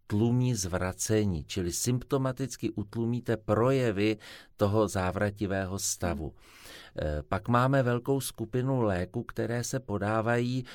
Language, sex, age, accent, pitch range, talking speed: Czech, male, 50-69, native, 100-115 Hz, 95 wpm